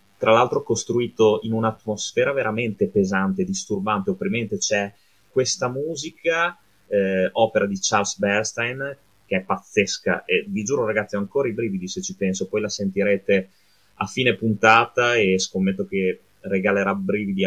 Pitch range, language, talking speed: 95-125 Hz, Italian, 145 wpm